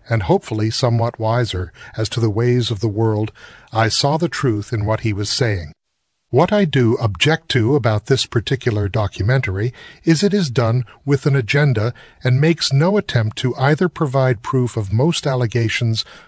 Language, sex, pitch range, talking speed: English, male, 110-140 Hz, 175 wpm